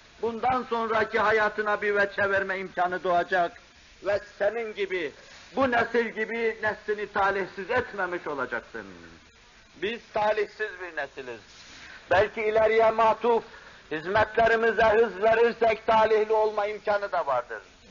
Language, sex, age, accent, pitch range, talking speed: Turkish, male, 60-79, native, 210-230 Hz, 110 wpm